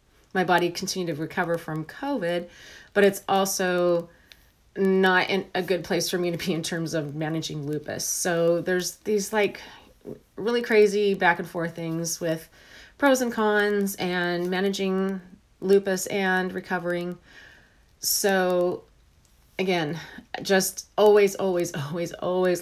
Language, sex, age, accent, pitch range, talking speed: English, female, 30-49, American, 170-195 Hz, 135 wpm